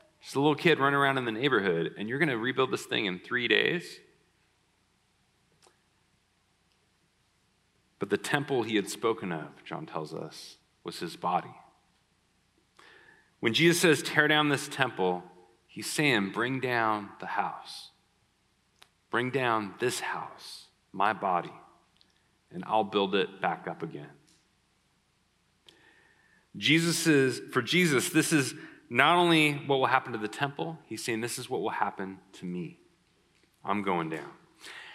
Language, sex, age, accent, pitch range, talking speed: English, male, 40-59, American, 110-150 Hz, 140 wpm